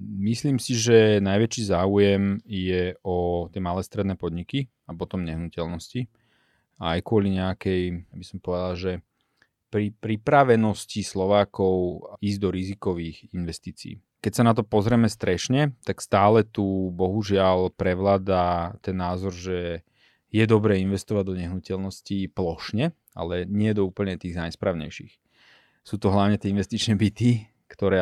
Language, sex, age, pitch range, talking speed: Slovak, male, 30-49, 95-110 Hz, 135 wpm